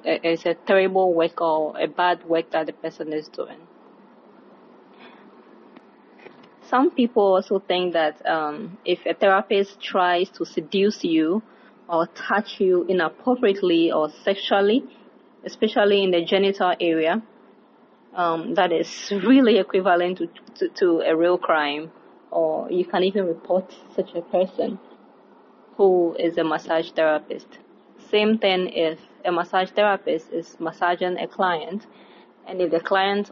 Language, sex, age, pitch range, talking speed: English, female, 20-39, 170-200 Hz, 135 wpm